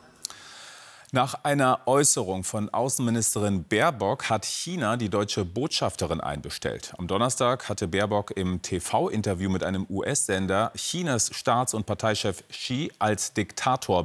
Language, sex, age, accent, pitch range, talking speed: German, male, 40-59, German, 100-135 Hz, 120 wpm